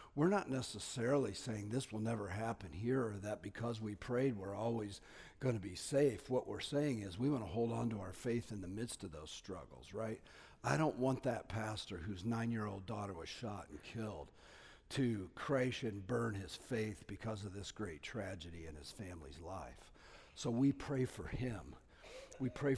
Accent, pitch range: American, 100-130 Hz